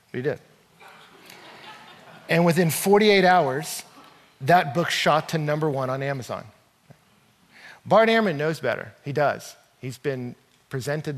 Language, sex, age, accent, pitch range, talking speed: English, male, 40-59, American, 130-165 Hz, 125 wpm